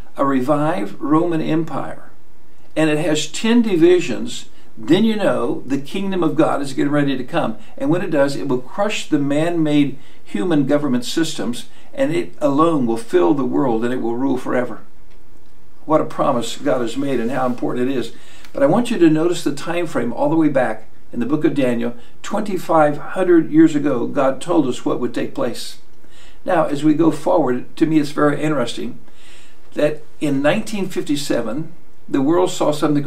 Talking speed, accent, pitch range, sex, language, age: 185 wpm, American, 145-235 Hz, male, English, 60-79